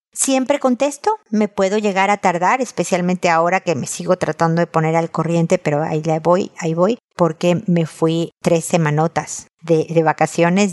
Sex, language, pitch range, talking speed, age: female, Spanish, 165-210 Hz, 175 wpm, 50-69